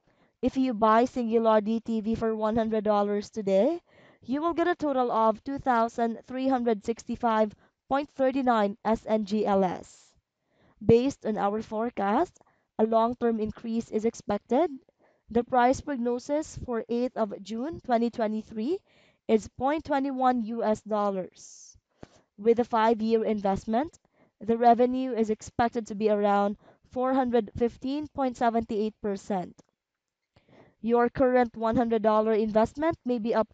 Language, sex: English, female